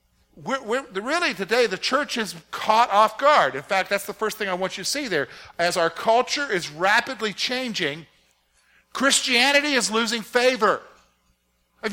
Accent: American